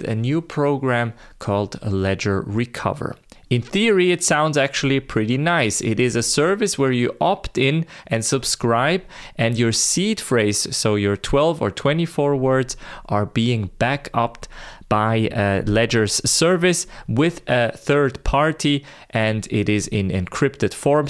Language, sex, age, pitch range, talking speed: English, male, 30-49, 110-145 Hz, 145 wpm